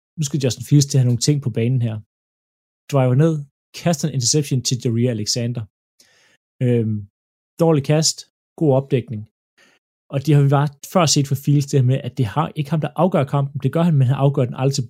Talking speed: 220 wpm